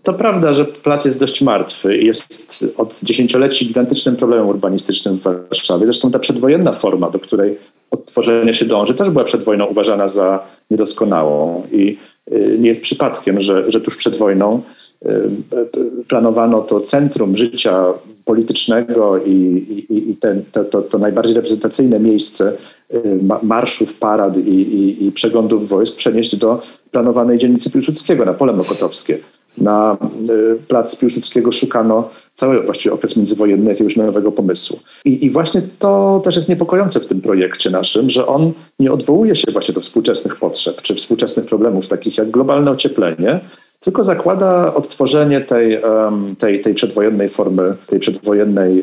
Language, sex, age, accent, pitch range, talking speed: Polish, male, 40-59, native, 105-140 Hz, 145 wpm